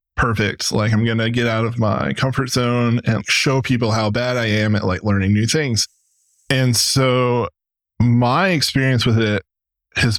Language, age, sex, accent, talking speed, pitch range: English, 10-29, male, American, 170 wpm, 105-130 Hz